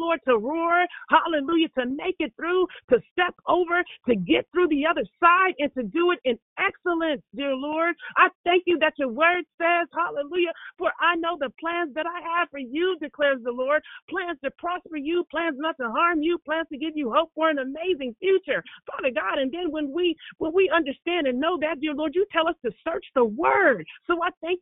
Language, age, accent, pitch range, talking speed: English, 40-59, American, 280-345 Hz, 215 wpm